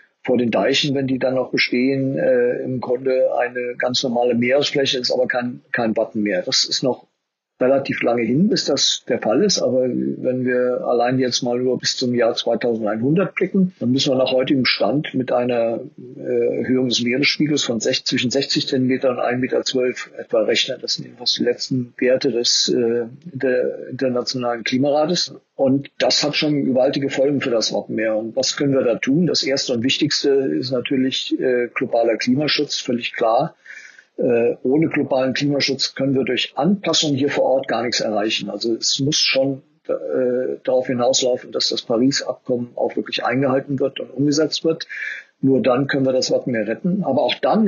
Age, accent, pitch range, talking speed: 50-69, German, 125-145 Hz, 175 wpm